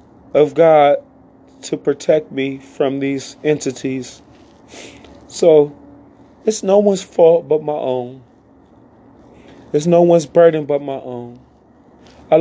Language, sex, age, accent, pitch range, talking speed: English, male, 30-49, American, 170-220 Hz, 115 wpm